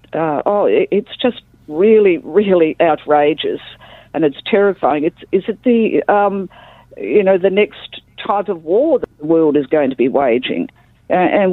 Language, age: English, 50-69